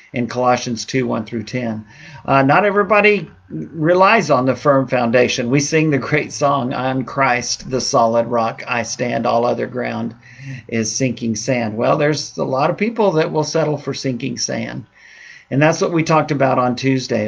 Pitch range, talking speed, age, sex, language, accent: 125-150 Hz, 180 wpm, 50-69, male, English, American